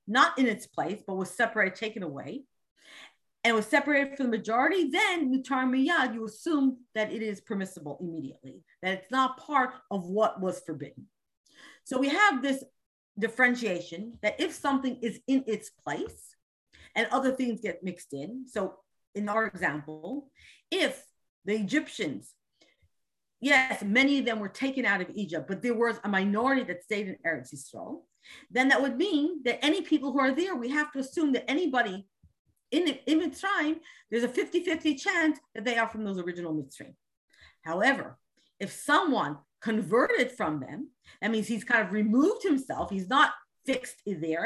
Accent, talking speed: American, 165 wpm